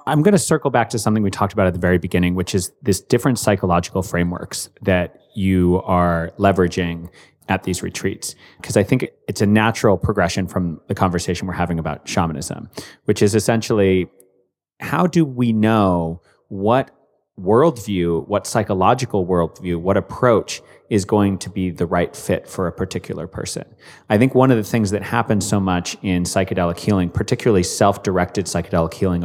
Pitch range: 90-115 Hz